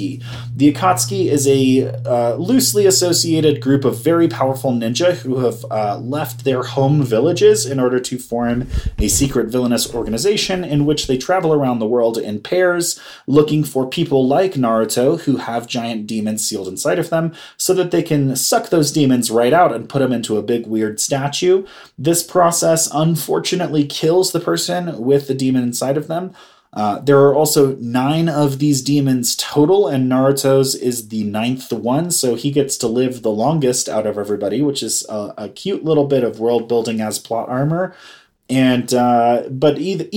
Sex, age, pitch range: male, 30-49, 120-150 Hz